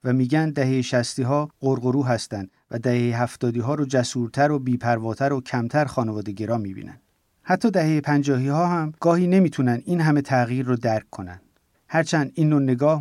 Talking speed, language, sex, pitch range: 165 wpm, Persian, male, 125-155 Hz